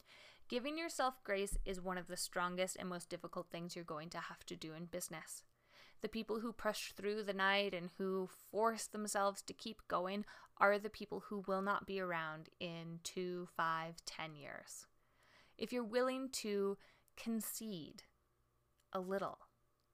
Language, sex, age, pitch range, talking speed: English, female, 20-39, 185-235 Hz, 165 wpm